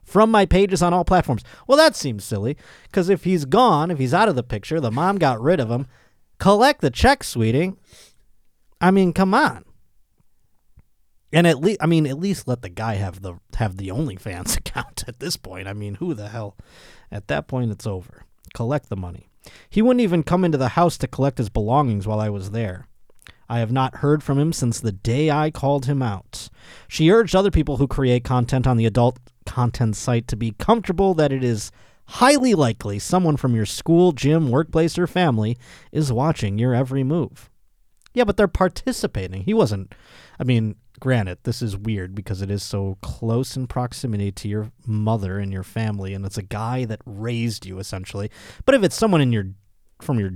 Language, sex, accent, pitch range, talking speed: English, male, American, 105-170 Hz, 200 wpm